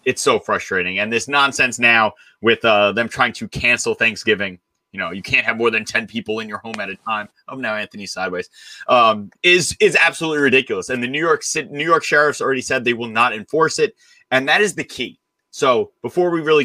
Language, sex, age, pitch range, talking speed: English, male, 30-49, 115-160 Hz, 215 wpm